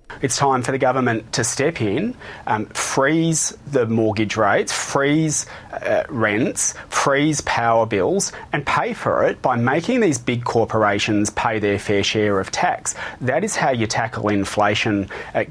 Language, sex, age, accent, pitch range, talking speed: Dutch, male, 30-49, Australian, 125-195 Hz, 160 wpm